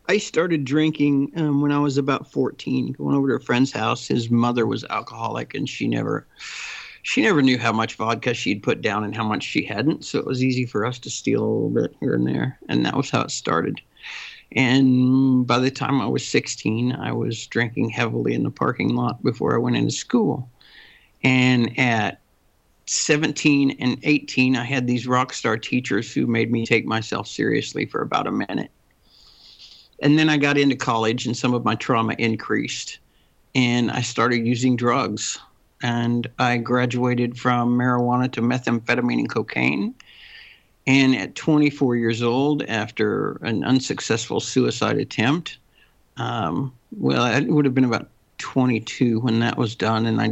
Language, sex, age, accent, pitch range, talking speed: English, male, 50-69, American, 115-140 Hz, 175 wpm